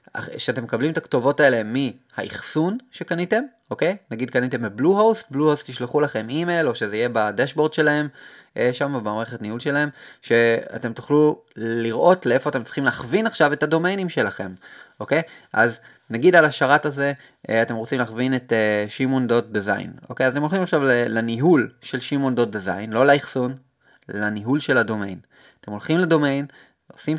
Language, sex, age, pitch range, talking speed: Hebrew, male, 20-39, 110-155 Hz, 140 wpm